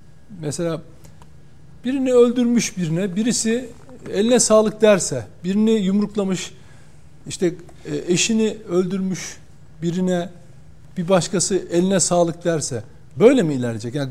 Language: Turkish